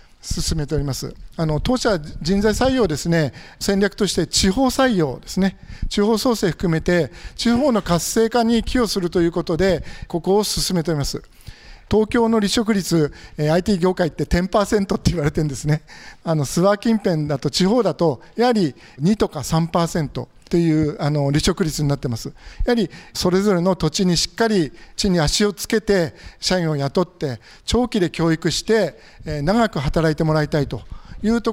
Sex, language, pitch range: male, Japanese, 155-205 Hz